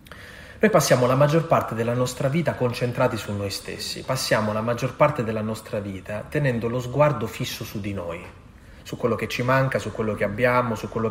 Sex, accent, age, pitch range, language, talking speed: male, native, 30-49, 110-140 Hz, Italian, 200 wpm